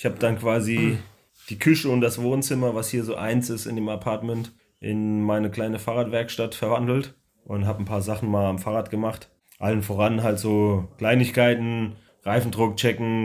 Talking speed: 170 wpm